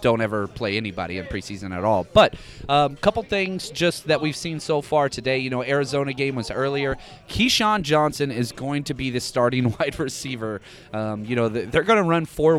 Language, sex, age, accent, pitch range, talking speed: English, male, 30-49, American, 115-145 Hz, 205 wpm